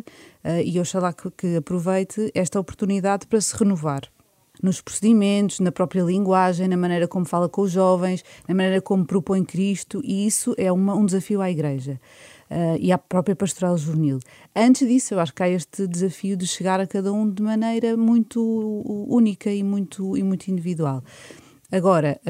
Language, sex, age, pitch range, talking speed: Portuguese, female, 30-49, 175-205 Hz, 180 wpm